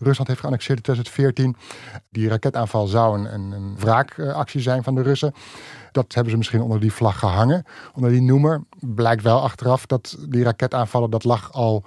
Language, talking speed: Dutch, 175 wpm